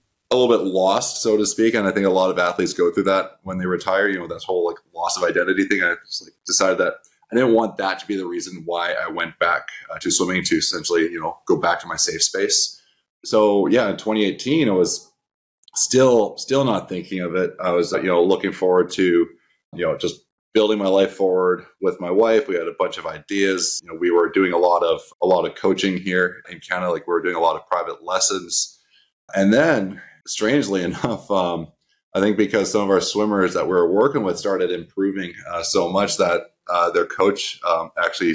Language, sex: English, male